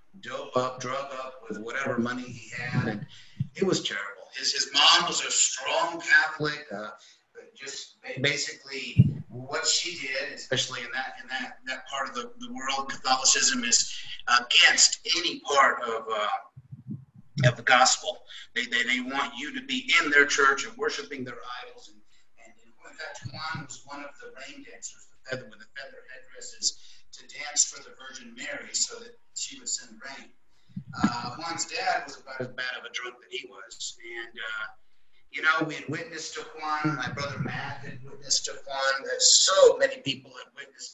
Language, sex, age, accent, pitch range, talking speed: English, male, 50-69, American, 130-160 Hz, 185 wpm